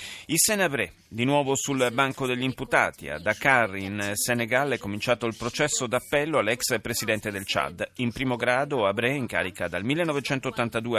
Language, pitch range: Italian, 105-130 Hz